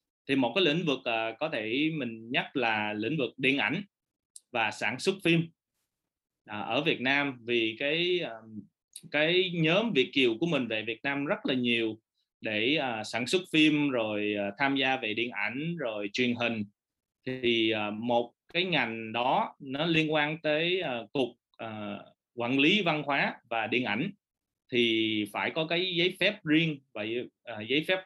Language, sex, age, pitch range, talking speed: English, male, 20-39, 115-155 Hz, 160 wpm